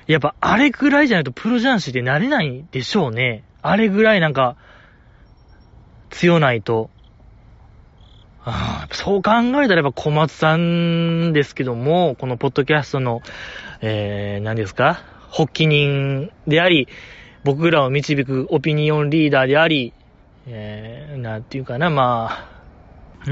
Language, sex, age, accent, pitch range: Japanese, male, 20-39, native, 125-175 Hz